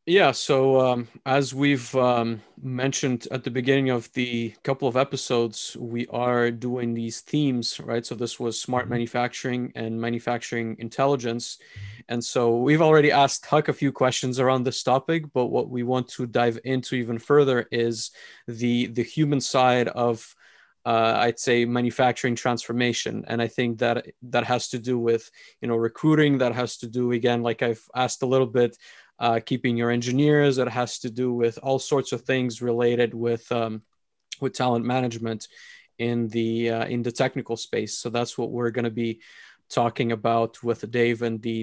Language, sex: English, male